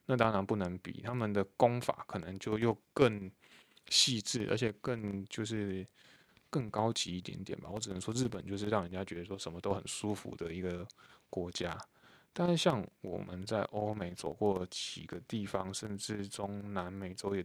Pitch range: 95-115 Hz